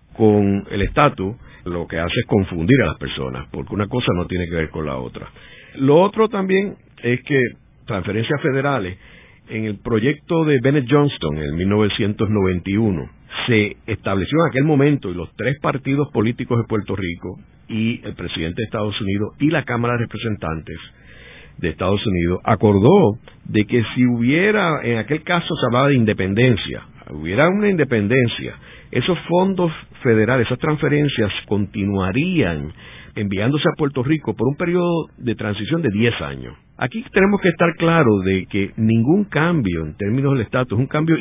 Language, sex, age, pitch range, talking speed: Spanish, male, 60-79, 95-145 Hz, 165 wpm